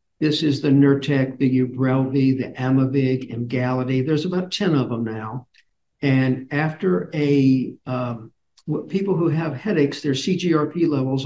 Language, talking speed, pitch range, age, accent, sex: English, 145 wpm, 130-155 Hz, 60-79, American, male